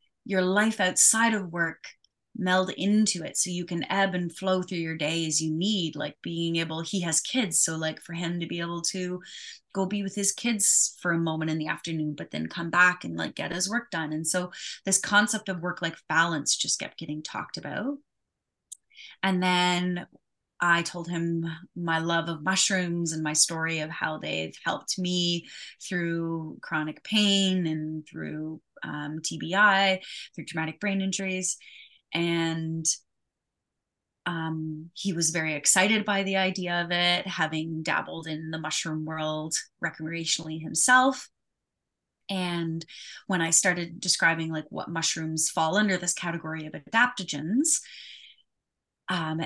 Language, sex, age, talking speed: English, female, 20-39, 160 wpm